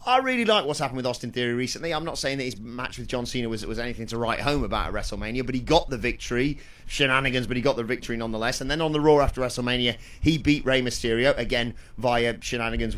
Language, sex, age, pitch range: English, male, 30-49, 115-150 Hz